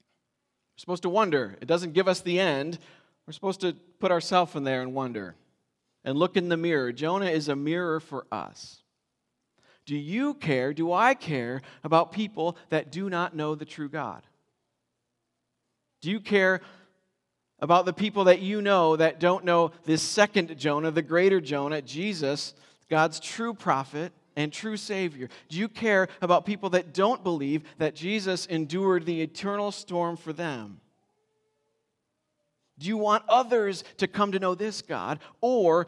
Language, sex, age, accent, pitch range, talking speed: English, male, 40-59, American, 150-200 Hz, 160 wpm